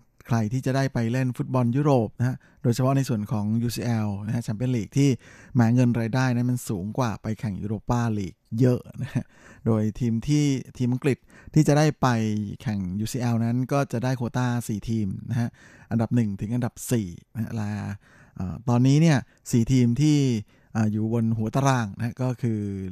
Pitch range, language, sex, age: 115-135 Hz, Thai, male, 20-39